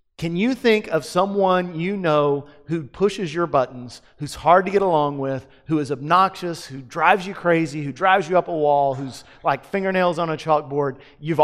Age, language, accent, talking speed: 40-59, English, American, 195 wpm